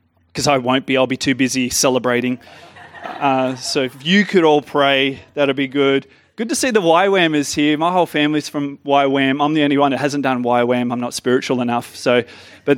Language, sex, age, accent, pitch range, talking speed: English, male, 20-39, Australian, 125-160 Hz, 205 wpm